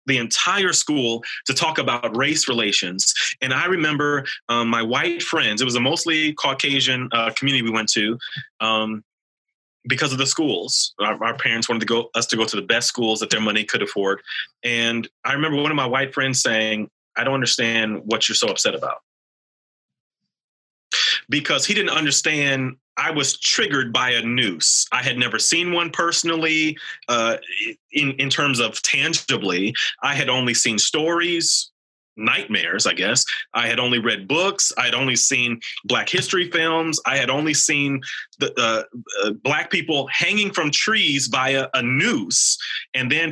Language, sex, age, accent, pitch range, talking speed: English, male, 30-49, American, 115-155 Hz, 175 wpm